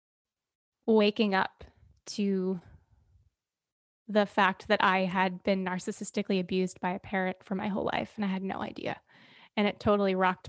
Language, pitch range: English, 195-215 Hz